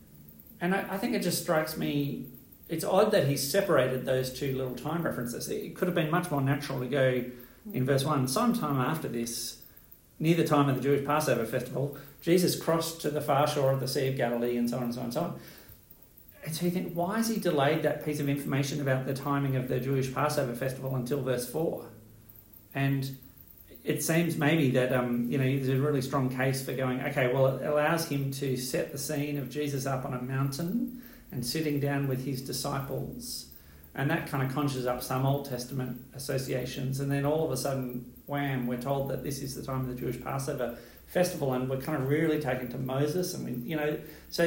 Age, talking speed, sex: 40-59, 215 wpm, male